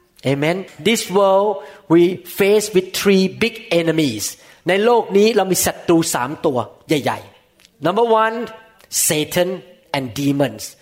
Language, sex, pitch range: Thai, male, 160-225 Hz